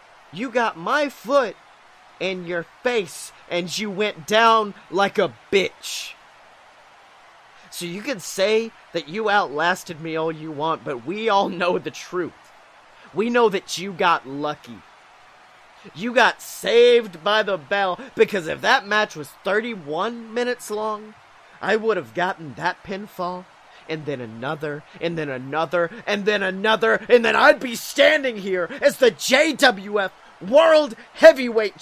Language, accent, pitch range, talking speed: English, American, 165-235 Hz, 145 wpm